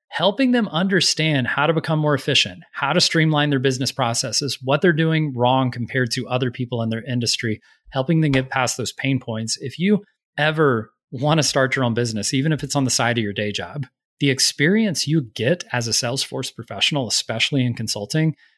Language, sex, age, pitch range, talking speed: English, male, 30-49, 110-140 Hz, 200 wpm